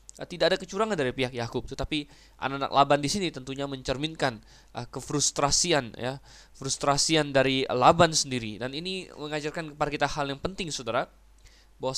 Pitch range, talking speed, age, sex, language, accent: 125-160 Hz, 145 wpm, 20-39, male, Indonesian, native